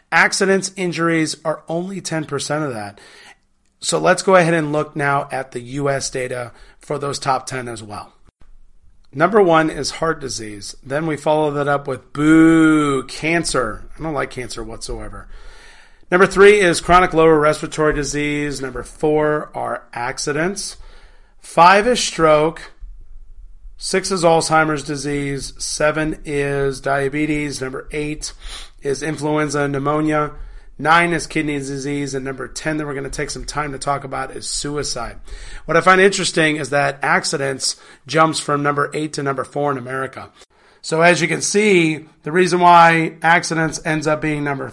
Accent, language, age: American, English, 30-49